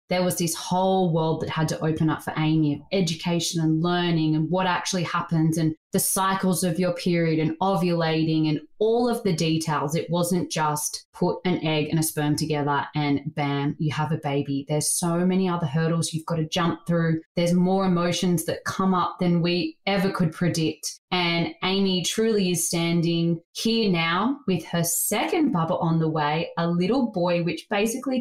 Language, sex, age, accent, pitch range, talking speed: English, female, 20-39, Australian, 160-190 Hz, 185 wpm